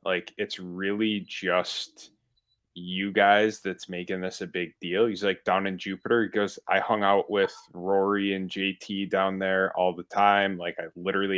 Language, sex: English, male